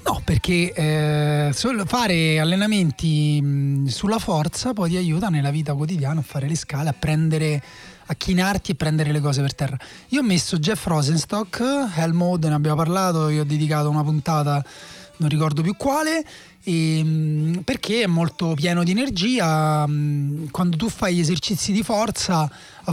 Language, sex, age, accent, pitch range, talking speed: Italian, male, 30-49, native, 150-190 Hz, 155 wpm